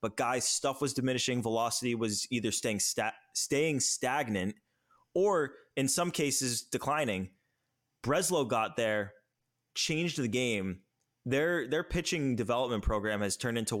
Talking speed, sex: 135 wpm, male